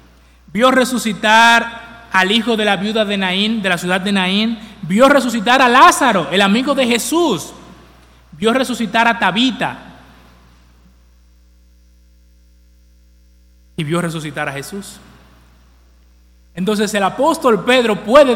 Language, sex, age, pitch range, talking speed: English, male, 30-49, 135-220 Hz, 120 wpm